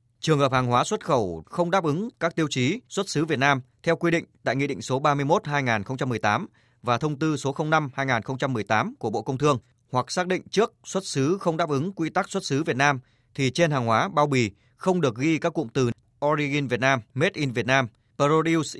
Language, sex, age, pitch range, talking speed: Vietnamese, male, 20-39, 120-160 Hz, 215 wpm